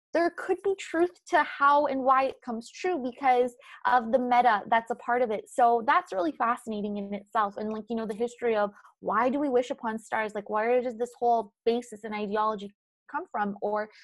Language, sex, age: English, female, 20-39